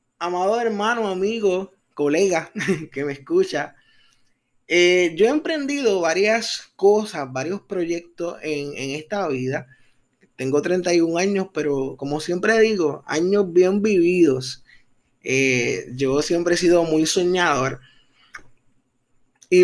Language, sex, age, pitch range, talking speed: Spanish, male, 20-39, 145-195 Hz, 115 wpm